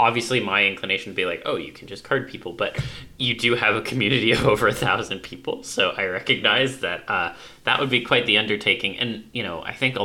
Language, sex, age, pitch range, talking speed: English, male, 20-39, 95-120 Hz, 240 wpm